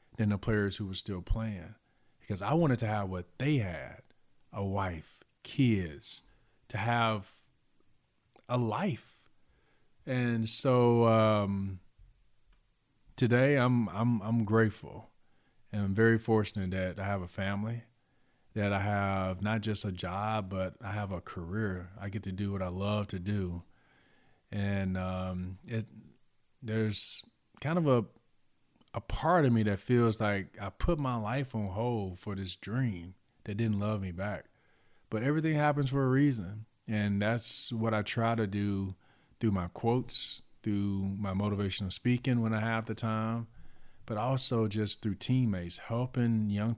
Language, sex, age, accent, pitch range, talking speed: English, male, 40-59, American, 95-115 Hz, 155 wpm